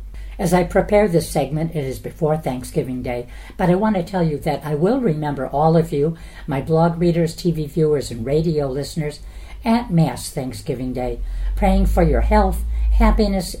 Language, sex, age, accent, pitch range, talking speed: English, female, 60-79, American, 130-180 Hz, 175 wpm